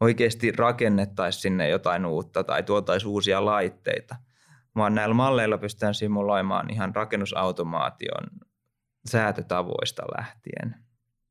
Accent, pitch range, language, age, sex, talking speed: native, 105-120 Hz, Finnish, 20-39, male, 95 wpm